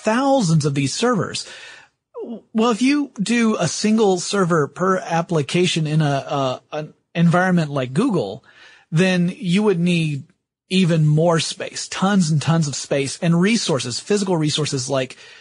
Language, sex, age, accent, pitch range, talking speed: English, male, 30-49, American, 145-205 Hz, 140 wpm